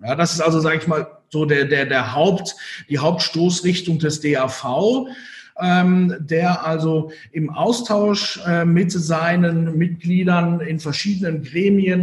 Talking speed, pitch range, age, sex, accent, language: 140 wpm, 140-175 Hz, 50-69, male, German, German